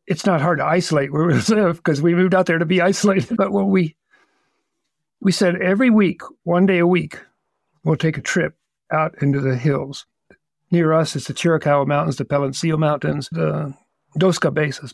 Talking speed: 190 wpm